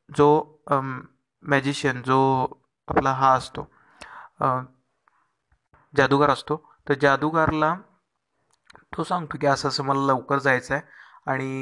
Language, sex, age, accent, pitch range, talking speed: Marathi, male, 30-49, native, 130-145 Hz, 110 wpm